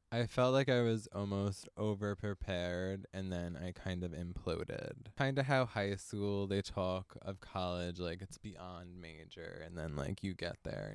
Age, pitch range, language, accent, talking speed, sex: 20-39, 95-110 Hz, English, American, 175 wpm, male